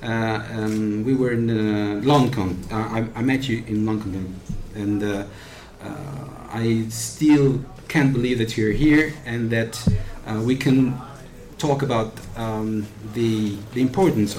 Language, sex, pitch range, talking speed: Italian, male, 105-125 Hz, 145 wpm